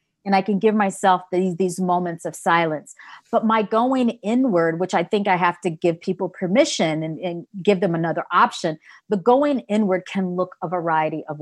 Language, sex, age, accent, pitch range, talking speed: English, female, 40-59, American, 160-195 Hz, 195 wpm